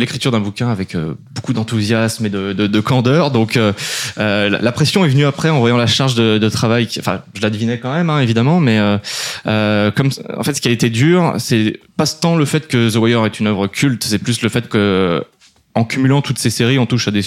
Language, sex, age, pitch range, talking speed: French, male, 20-39, 105-125 Hz, 250 wpm